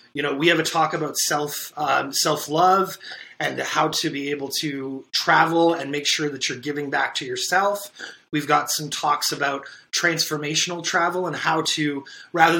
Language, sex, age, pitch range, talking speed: English, male, 30-49, 140-165 Hz, 180 wpm